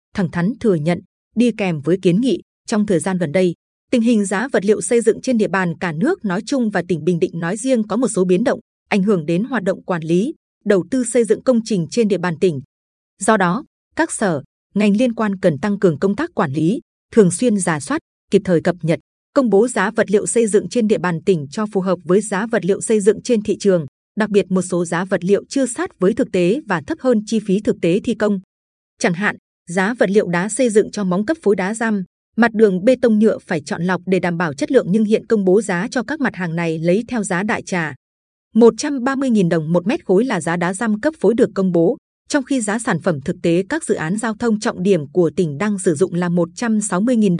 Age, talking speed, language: 20-39, 250 wpm, Vietnamese